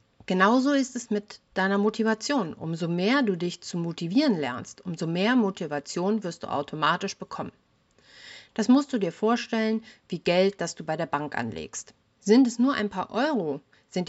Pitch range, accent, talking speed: 165-225 Hz, German, 170 wpm